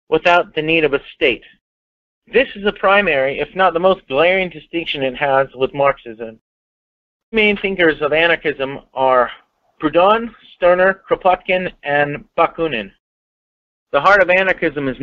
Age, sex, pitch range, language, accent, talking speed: 30-49, male, 140-185 Hz, English, American, 140 wpm